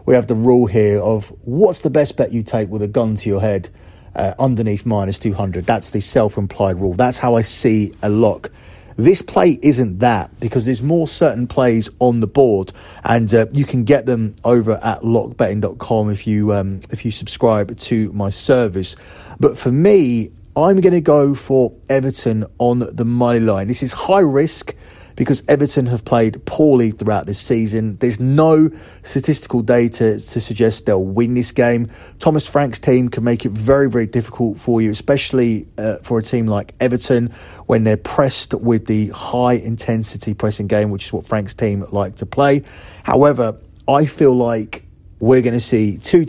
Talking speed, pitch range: 180 wpm, 105-125 Hz